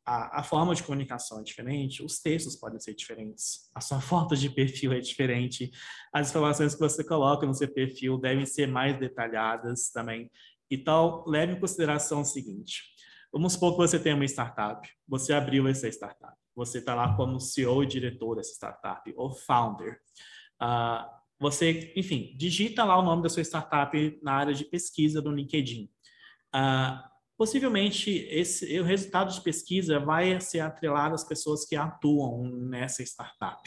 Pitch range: 125-160 Hz